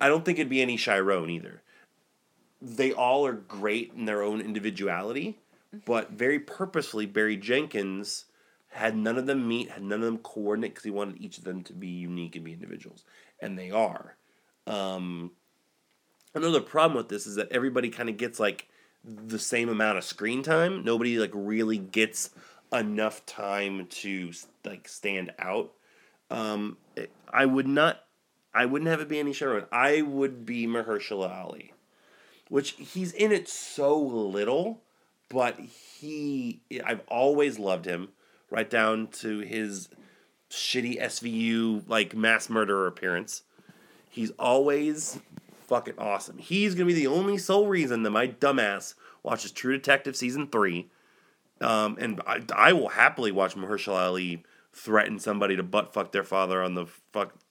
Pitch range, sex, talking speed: 100-135 Hz, male, 155 wpm